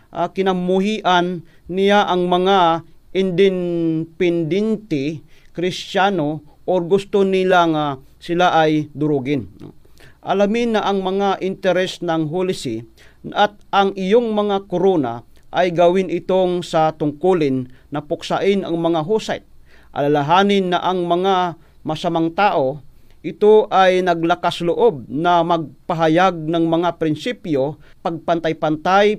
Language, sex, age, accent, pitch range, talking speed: Filipino, male, 40-59, native, 160-195 Hz, 105 wpm